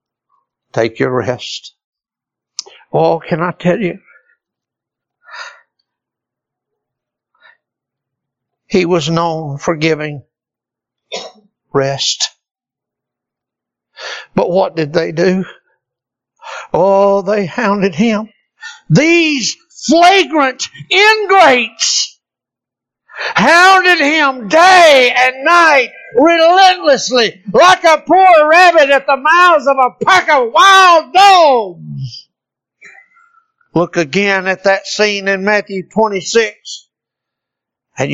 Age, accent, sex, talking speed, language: 60-79, American, male, 85 wpm, English